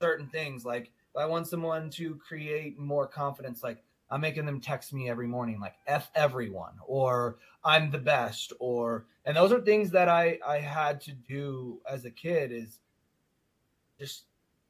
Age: 20-39